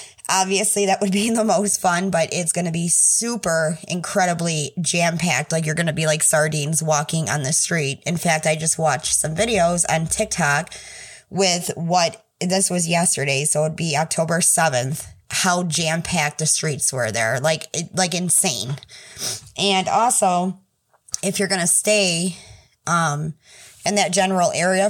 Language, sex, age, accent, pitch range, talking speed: English, female, 20-39, American, 155-190 Hz, 160 wpm